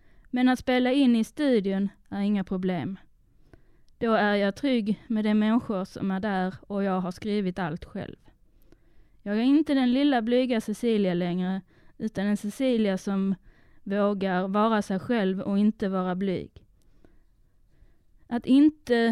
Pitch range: 195-235 Hz